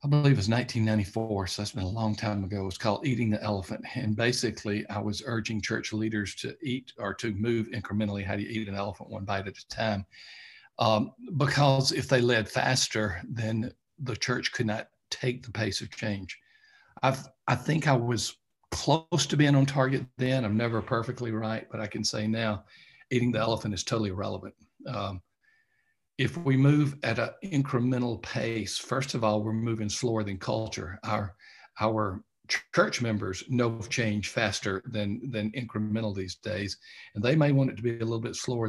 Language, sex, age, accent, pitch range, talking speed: English, male, 50-69, American, 105-125 Hz, 190 wpm